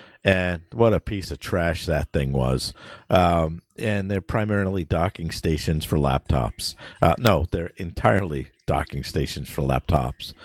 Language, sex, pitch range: English, male, 85-105 Hz